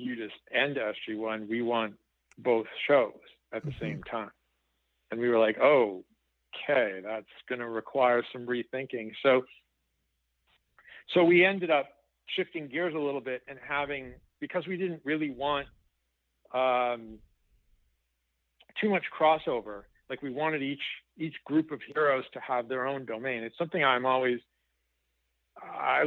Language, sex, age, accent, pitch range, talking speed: English, male, 50-69, American, 110-135 Hz, 145 wpm